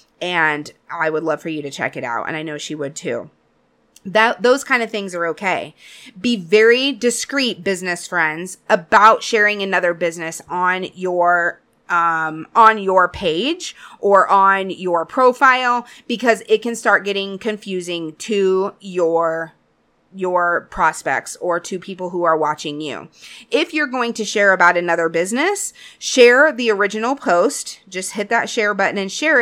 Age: 30-49